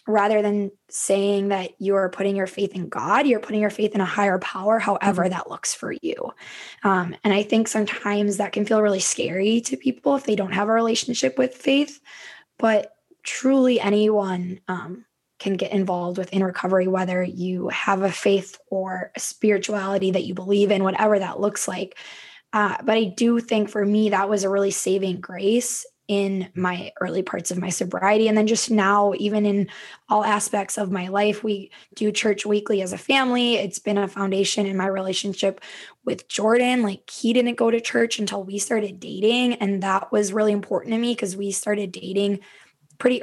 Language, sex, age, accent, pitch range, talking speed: English, female, 10-29, American, 195-225 Hz, 190 wpm